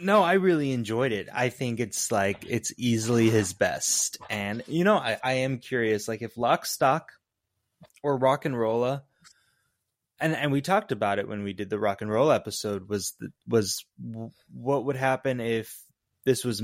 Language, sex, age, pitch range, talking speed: English, male, 20-39, 105-130 Hz, 185 wpm